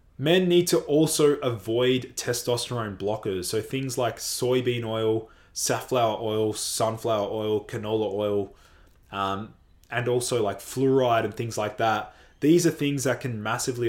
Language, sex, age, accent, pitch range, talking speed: English, male, 20-39, Australian, 100-125 Hz, 145 wpm